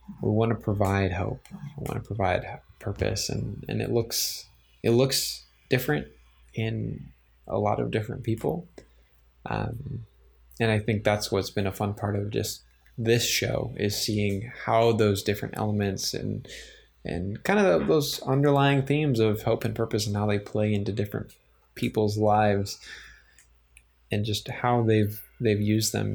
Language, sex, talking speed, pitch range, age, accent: English, male, 160 wpm, 100-120 Hz, 20-39, American